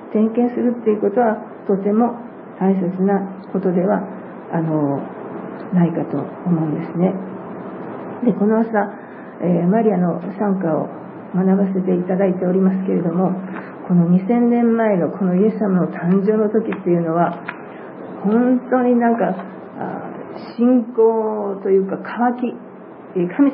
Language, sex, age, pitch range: Japanese, female, 50-69, 180-220 Hz